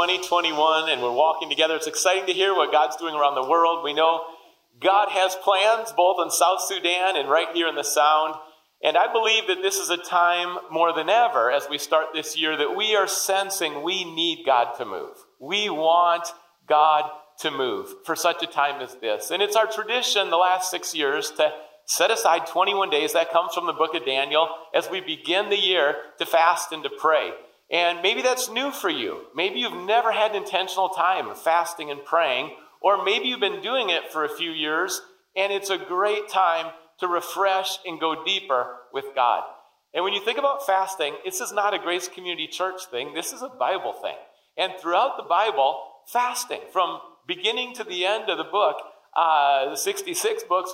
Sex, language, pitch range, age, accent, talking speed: male, English, 165-220 Hz, 40-59, American, 200 wpm